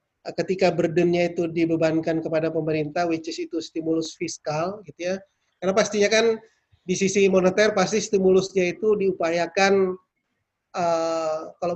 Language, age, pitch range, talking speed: Indonesian, 30-49, 160-185 Hz, 130 wpm